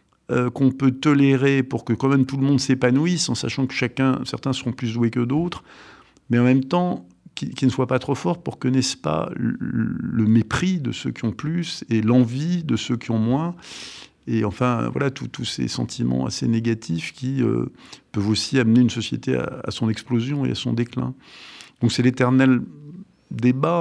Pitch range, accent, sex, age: 115-140 Hz, French, male, 50-69